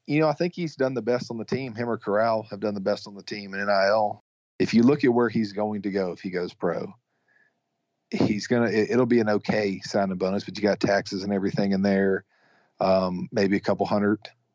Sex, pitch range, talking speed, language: male, 100-115 Hz, 235 wpm, English